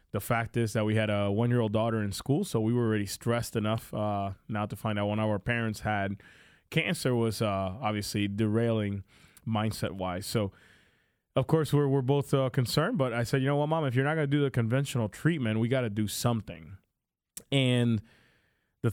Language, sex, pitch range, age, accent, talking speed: English, male, 110-135 Hz, 20-39, American, 205 wpm